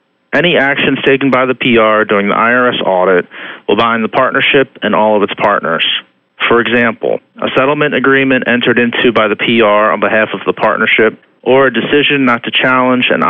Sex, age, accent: male, 40-59, American